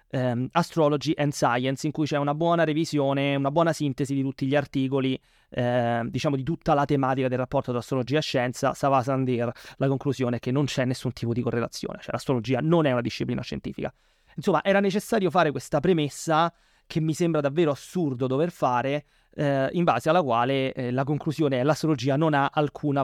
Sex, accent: male, native